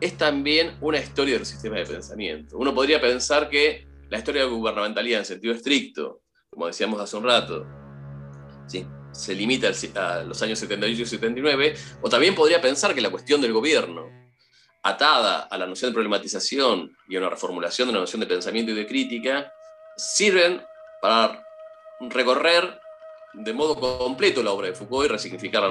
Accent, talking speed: Argentinian, 175 wpm